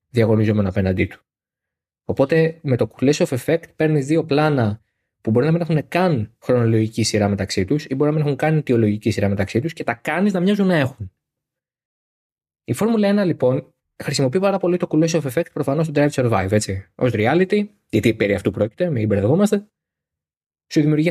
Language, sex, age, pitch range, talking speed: Greek, male, 20-39, 105-150 Hz, 190 wpm